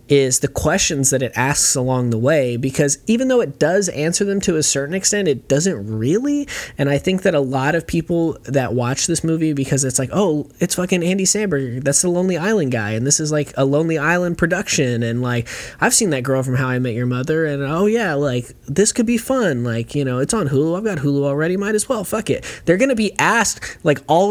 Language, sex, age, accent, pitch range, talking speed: English, male, 20-39, American, 120-160 Hz, 240 wpm